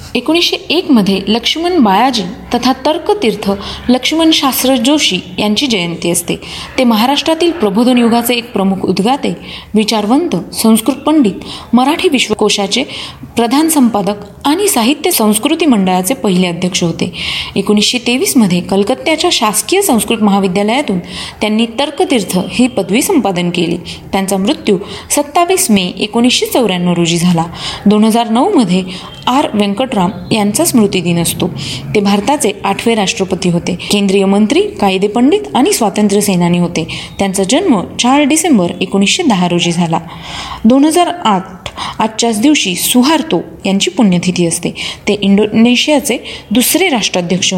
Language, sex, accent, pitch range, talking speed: Marathi, female, native, 195-270 Hz, 115 wpm